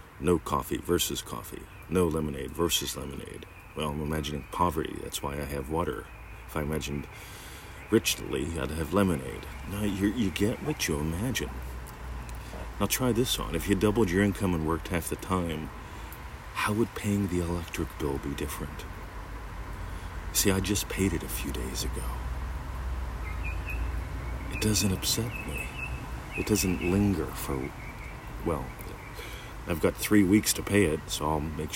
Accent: American